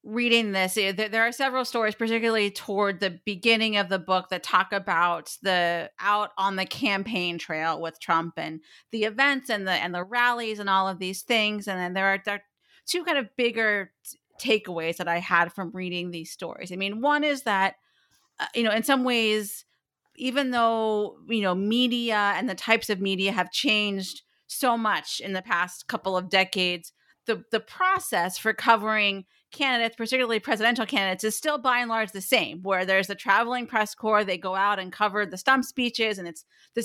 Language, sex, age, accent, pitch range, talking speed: English, female, 40-59, American, 190-240 Hz, 190 wpm